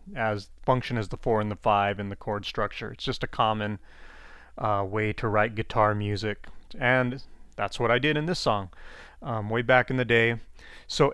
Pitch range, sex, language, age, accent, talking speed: 110-130 Hz, male, English, 30-49, American, 200 wpm